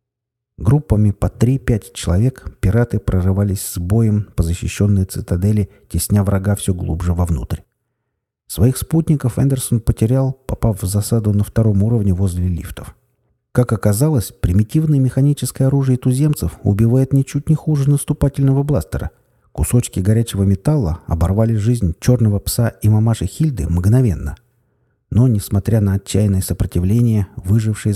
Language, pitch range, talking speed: Russian, 95-120 Hz, 120 wpm